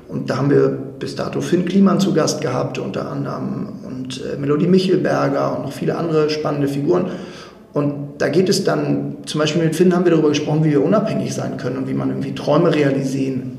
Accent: German